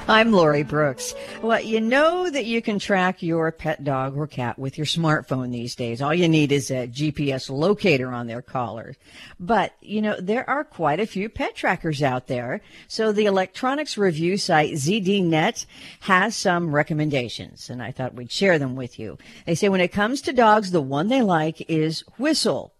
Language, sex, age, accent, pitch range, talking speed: English, female, 50-69, American, 140-195 Hz, 190 wpm